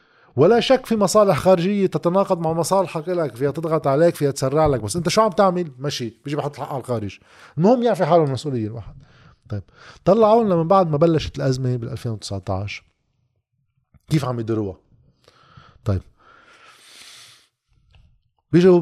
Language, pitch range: Arabic, 130-170 Hz